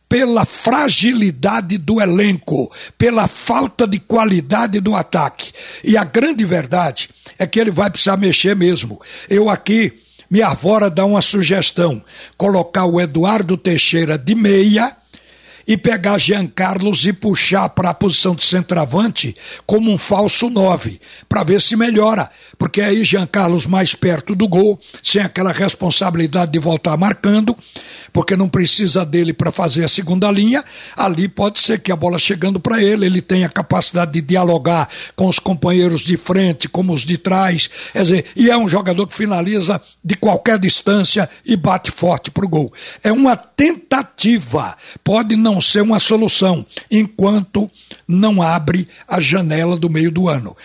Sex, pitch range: male, 175-210 Hz